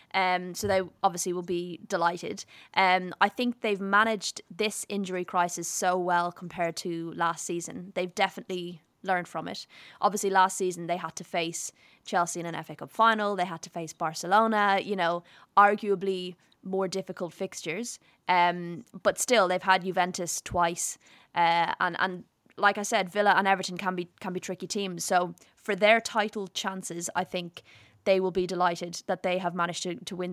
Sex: female